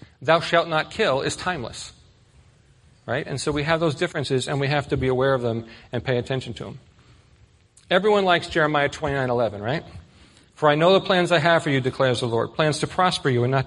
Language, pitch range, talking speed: English, 135-170 Hz, 220 wpm